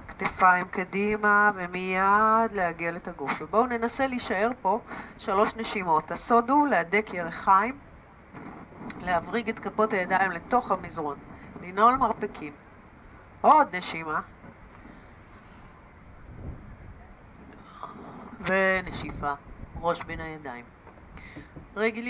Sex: female